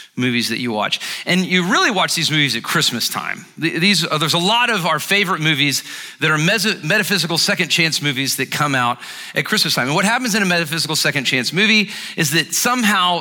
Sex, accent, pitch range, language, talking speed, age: male, American, 150-195 Hz, English, 215 wpm, 40-59